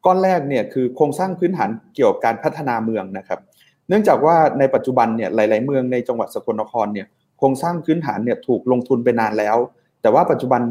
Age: 30-49